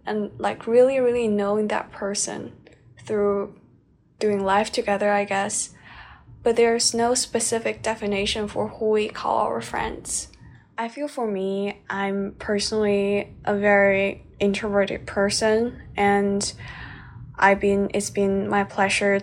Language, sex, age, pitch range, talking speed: English, female, 10-29, 195-210 Hz, 130 wpm